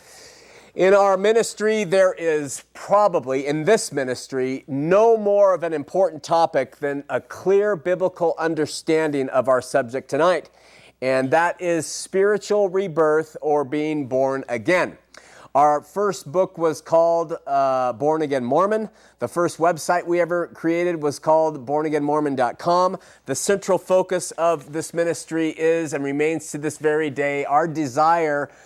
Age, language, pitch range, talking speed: 30-49, English, 145-175 Hz, 140 wpm